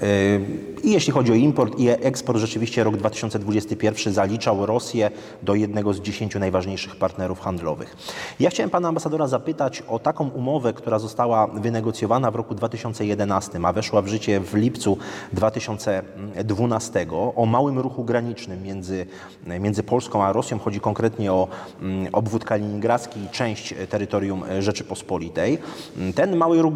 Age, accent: 30-49, native